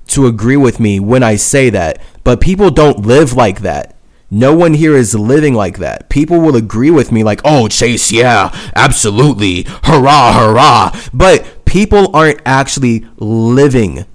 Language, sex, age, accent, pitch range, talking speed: English, male, 20-39, American, 105-125 Hz, 160 wpm